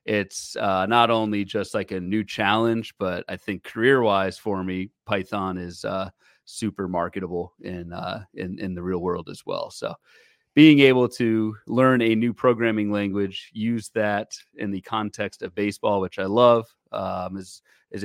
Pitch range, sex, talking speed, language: 95-115 Hz, male, 170 wpm, English